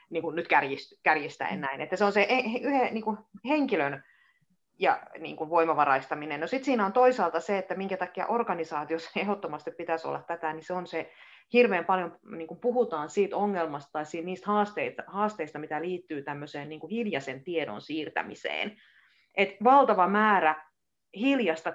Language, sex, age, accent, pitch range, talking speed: Finnish, female, 30-49, native, 155-200 Hz, 150 wpm